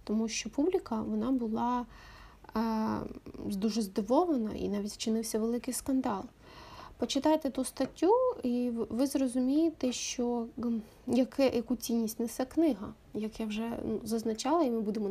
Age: 20-39